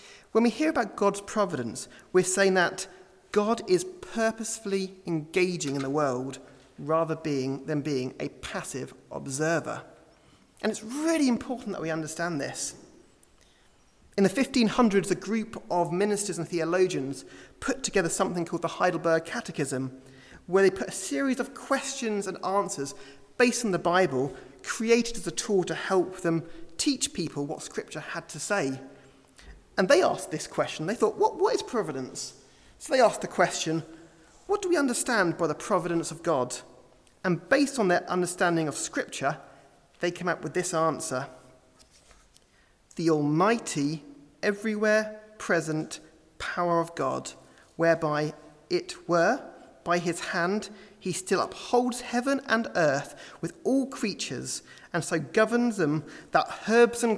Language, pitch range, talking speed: English, 155-220 Hz, 145 wpm